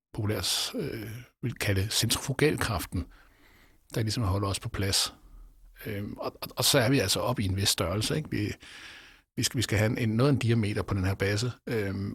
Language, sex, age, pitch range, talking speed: Danish, male, 60-79, 100-125 Hz, 200 wpm